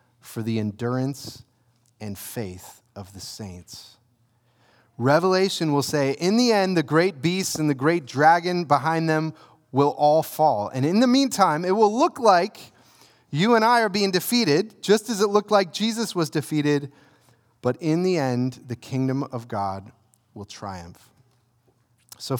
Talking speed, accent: 160 wpm, American